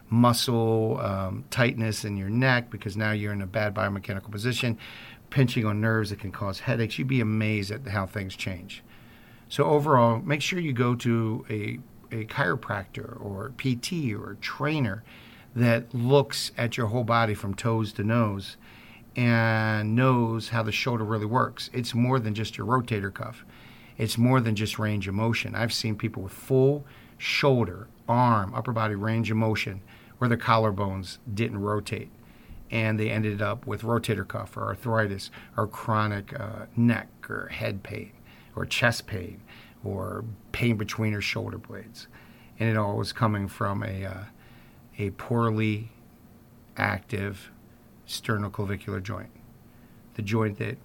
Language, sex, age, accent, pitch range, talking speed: English, male, 50-69, American, 105-120 Hz, 155 wpm